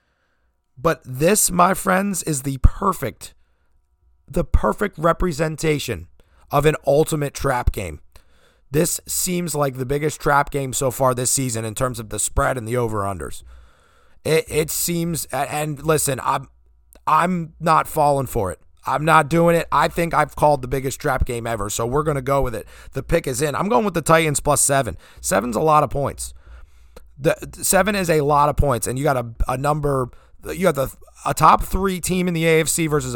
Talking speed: 190 wpm